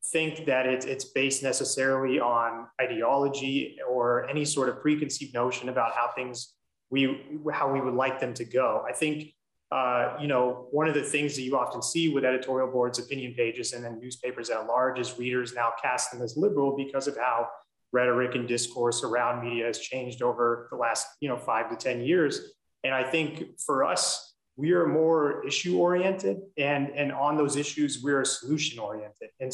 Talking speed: 190 wpm